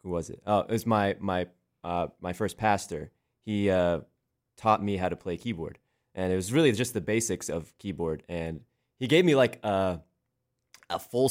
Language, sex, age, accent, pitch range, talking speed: English, male, 20-39, American, 85-110 Hz, 195 wpm